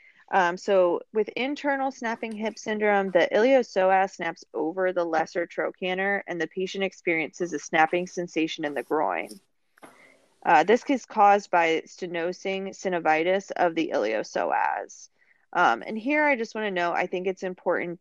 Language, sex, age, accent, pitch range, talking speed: English, female, 30-49, American, 160-195 Hz, 155 wpm